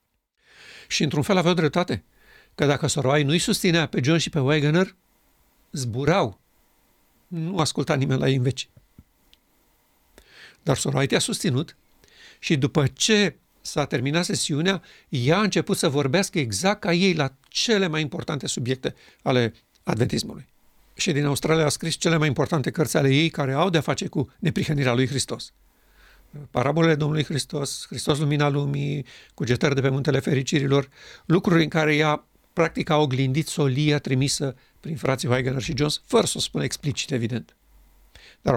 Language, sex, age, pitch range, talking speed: Romanian, male, 60-79, 135-165 Hz, 155 wpm